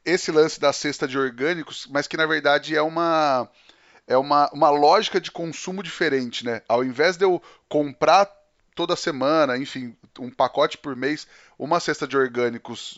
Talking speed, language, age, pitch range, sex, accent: 155 wpm, Portuguese, 20-39, 135-190 Hz, male, Brazilian